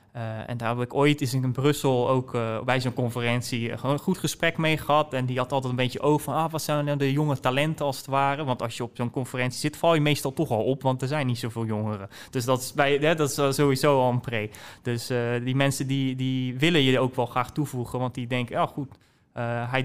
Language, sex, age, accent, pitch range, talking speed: Dutch, male, 20-39, Dutch, 120-145 Hz, 260 wpm